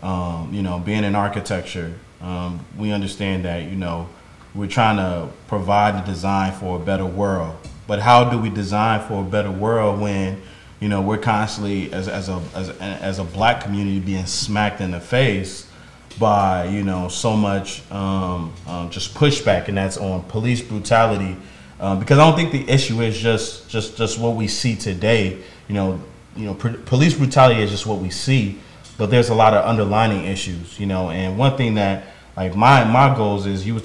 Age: 30-49